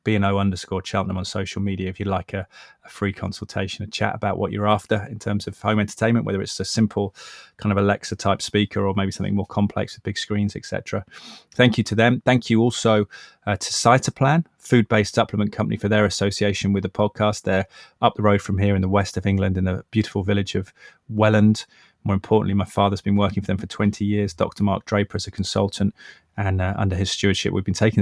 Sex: male